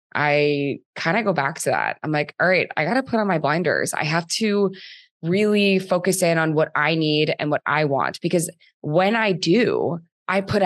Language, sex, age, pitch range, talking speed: English, female, 20-39, 145-175 Hz, 215 wpm